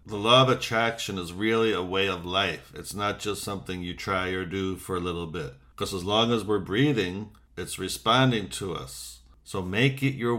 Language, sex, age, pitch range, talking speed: English, male, 50-69, 95-125 Hz, 210 wpm